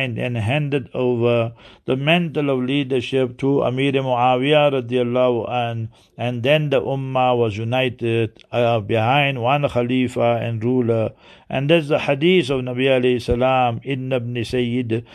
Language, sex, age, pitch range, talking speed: English, male, 60-79, 120-140 Hz, 140 wpm